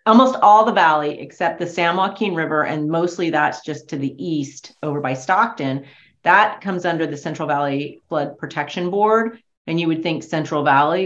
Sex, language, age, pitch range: female, English, 30-49, 150-180 Hz